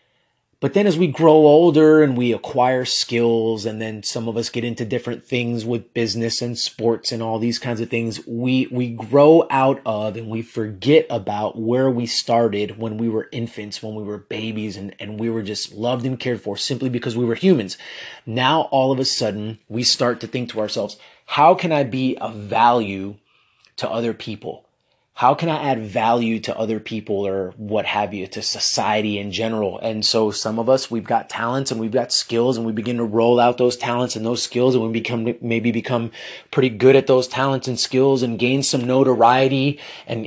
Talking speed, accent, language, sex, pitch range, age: 205 wpm, American, English, male, 115-135 Hz, 30-49